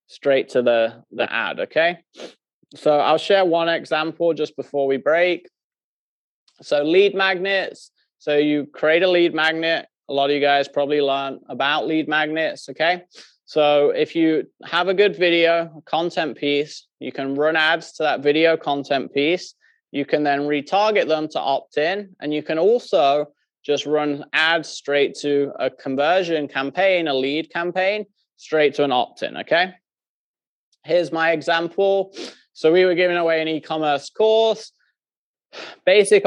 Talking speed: 150 wpm